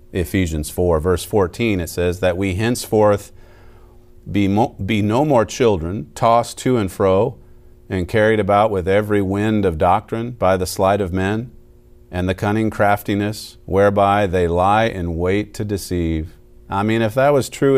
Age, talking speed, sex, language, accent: 40-59, 165 wpm, male, English, American